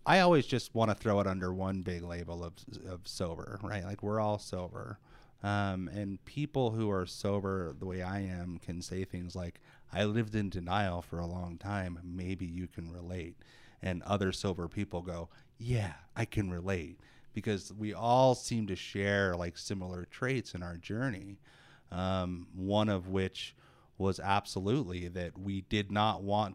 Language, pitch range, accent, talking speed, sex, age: English, 90-105 Hz, American, 175 wpm, male, 30-49